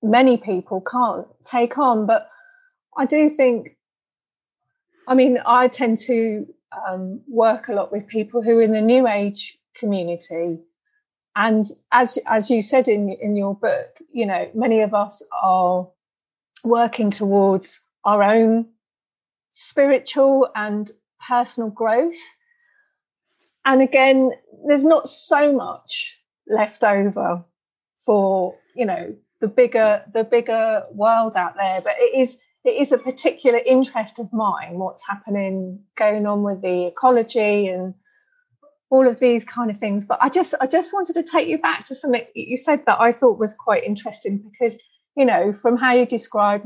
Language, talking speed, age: English, 150 wpm, 30-49